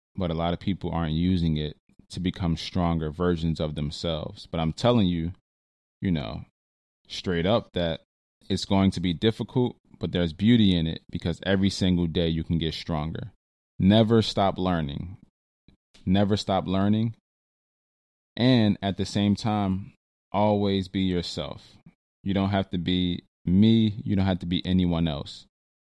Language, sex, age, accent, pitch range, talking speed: English, male, 20-39, American, 85-100 Hz, 160 wpm